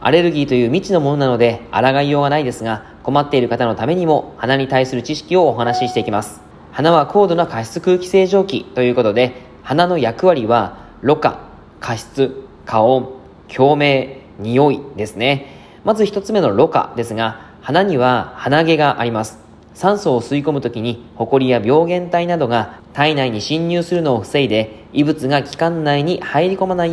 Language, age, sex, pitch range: Japanese, 20-39, male, 120-170 Hz